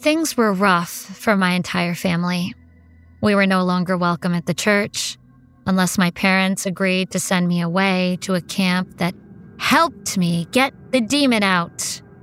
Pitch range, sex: 180-225 Hz, female